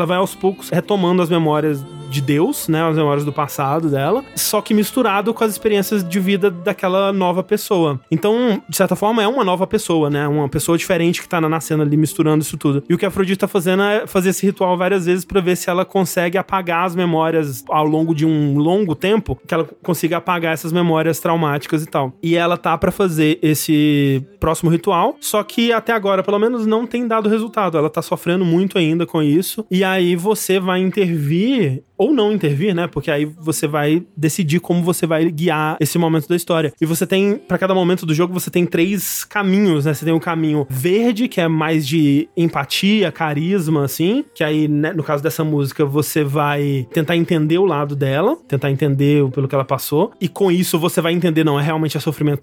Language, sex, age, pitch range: Portuguese, male, 20-39, 155-190 Hz